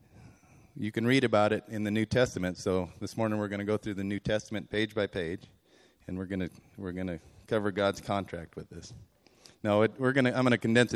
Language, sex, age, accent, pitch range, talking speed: English, male, 30-49, American, 95-115 Hz, 255 wpm